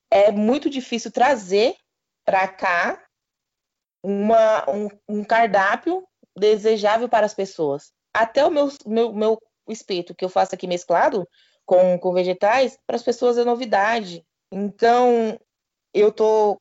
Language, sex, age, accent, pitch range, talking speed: Portuguese, female, 20-39, Brazilian, 190-230 Hz, 130 wpm